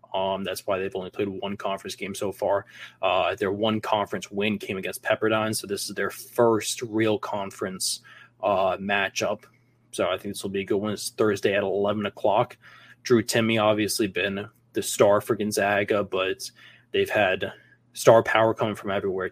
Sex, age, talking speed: male, 20-39, 180 wpm